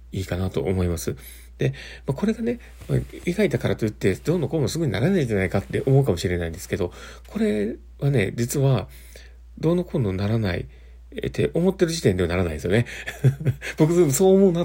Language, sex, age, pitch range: Japanese, male, 40-59, 85-135 Hz